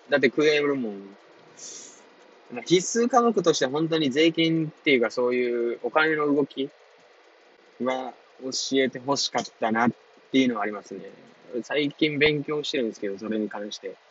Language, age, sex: Japanese, 20-39, male